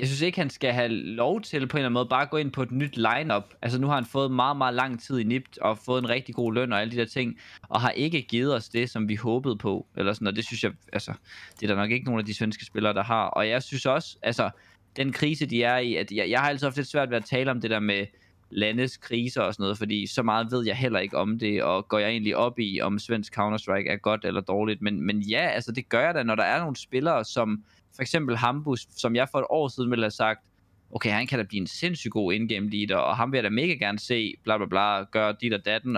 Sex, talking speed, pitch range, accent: male, 295 wpm, 105-130 Hz, native